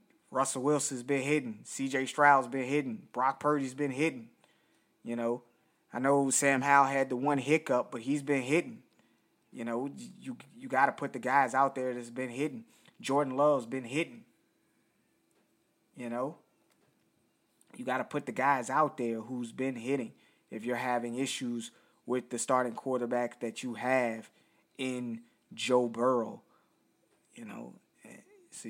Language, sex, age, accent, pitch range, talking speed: English, male, 20-39, American, 120-135 Hz, 155 wpm